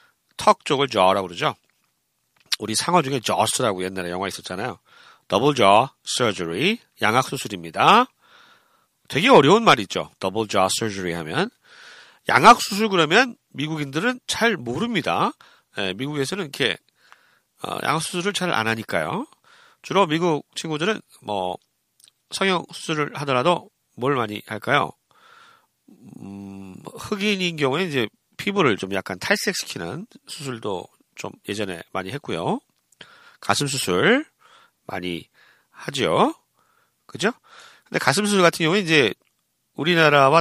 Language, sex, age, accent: Korean, male, 40-59, native